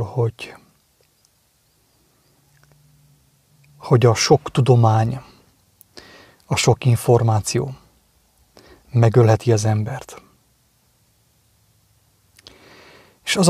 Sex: male